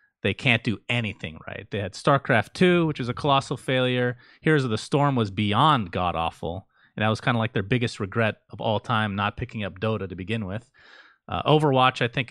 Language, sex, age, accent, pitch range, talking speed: English, male, 30-49, American, 105-135 Hz, 215 wpm